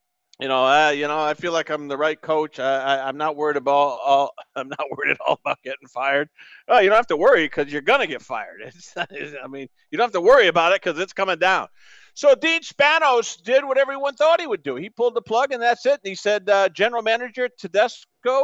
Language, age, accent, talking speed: English, 50-69, American, 255 wpm